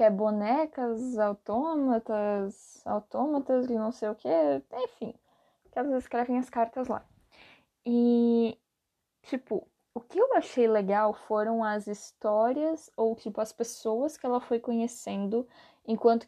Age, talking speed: 10-29, 135 wpm